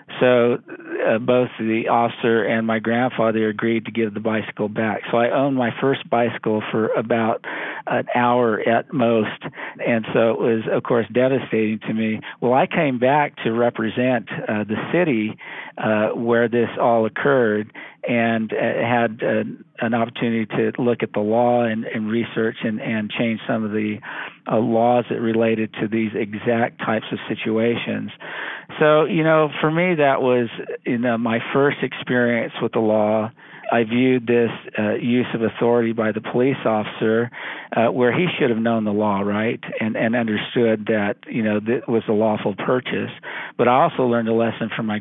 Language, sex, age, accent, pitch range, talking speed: English, male, 50-69, American, 110-120 Hz, 170 wpm